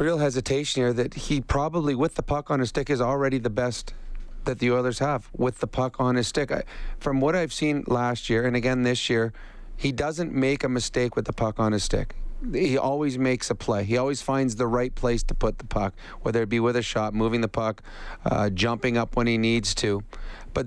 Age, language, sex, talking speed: 30-49, English, male, 230 wpm